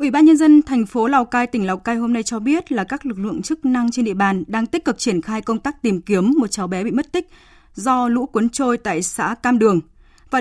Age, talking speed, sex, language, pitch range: 20-39, 275 wpm, female, Vietnamese, 205-265 Hz